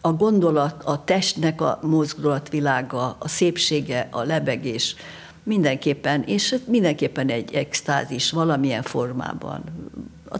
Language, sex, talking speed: Hungarian, female, 105 wpm